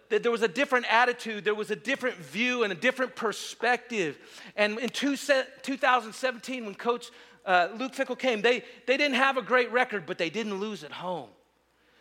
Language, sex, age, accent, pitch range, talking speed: English, male, 40-59, American, 185-255 Hz, 180 wpm